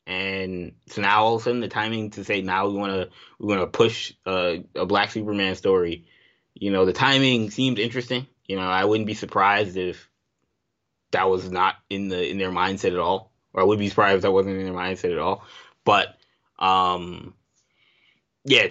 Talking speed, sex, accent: 200 wpm, male, American